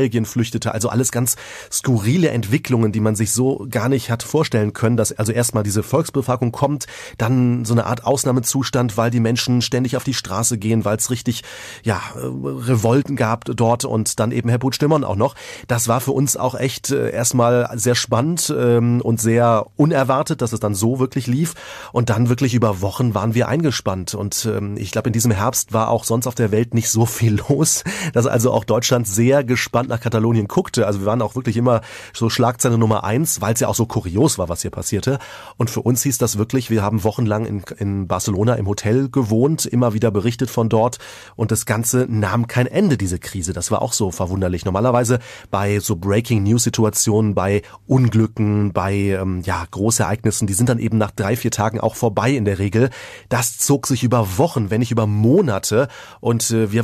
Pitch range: 110-125 Hz